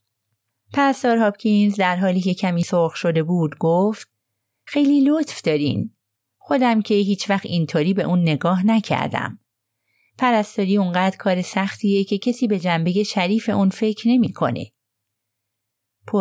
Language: Persian